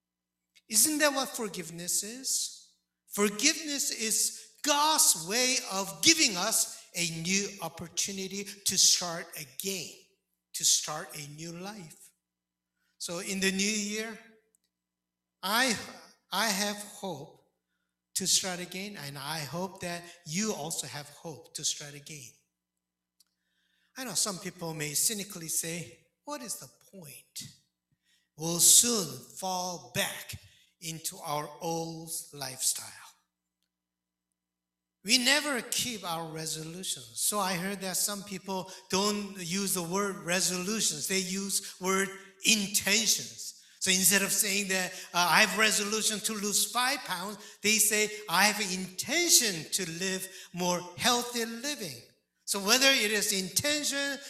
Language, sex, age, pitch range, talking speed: English, male, 60-79, 160-215 Hz, 125 wpm